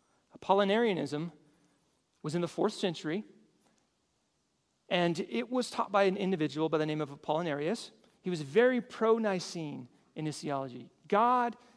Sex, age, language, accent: male, 40-59, English, American